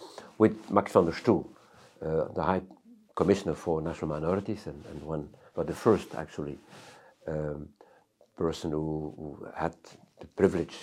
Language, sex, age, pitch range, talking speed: Hungarian, male, 60-79, 80-110 Hz, 145 wpm